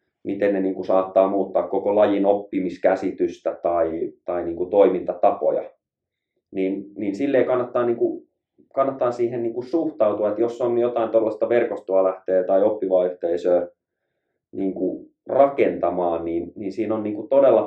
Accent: native